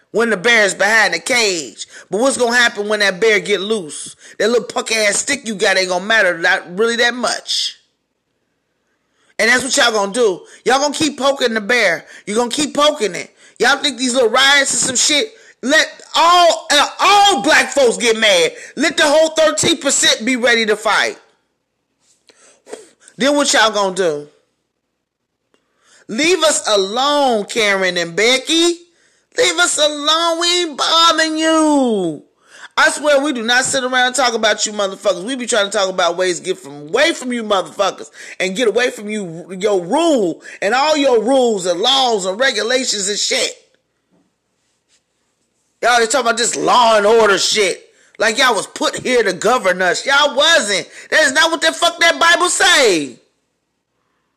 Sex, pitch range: male, 210-315 Hz